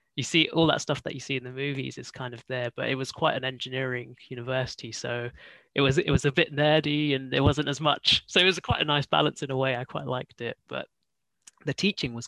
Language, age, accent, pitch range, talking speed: English, 20-39, British, 125-145 Hz, 265 wpm